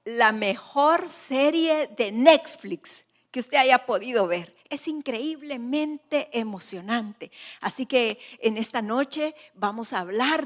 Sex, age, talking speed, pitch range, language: female, 50-69, 120 wpm, 230-300 Hz, Spanish